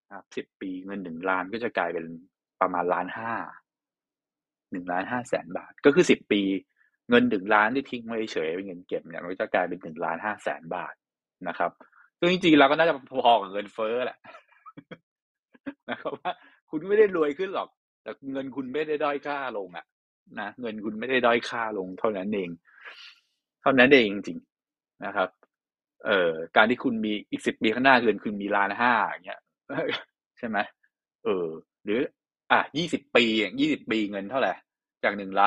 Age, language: 20-39, English